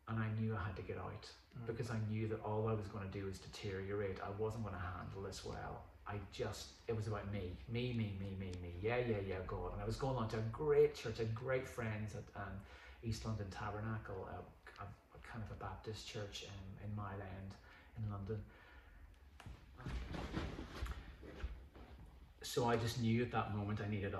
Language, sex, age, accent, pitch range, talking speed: English, male, 30-49, British, 95-115 Hz, 205 wpm